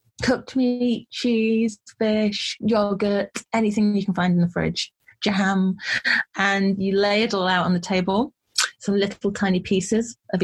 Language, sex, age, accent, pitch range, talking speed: English, female, 30-49, British, 185-225 Hz, 155 wpm